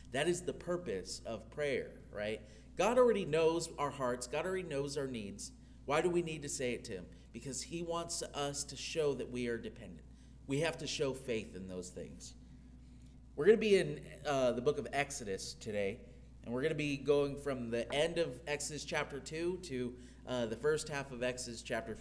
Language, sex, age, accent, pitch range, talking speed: English, male, 30-49, American, 110-155 Hz, 205 wpm